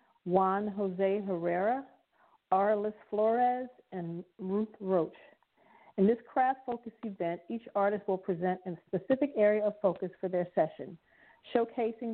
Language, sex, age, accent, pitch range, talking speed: English, female, 40-59, American, 175-210 Hz, 130 wpm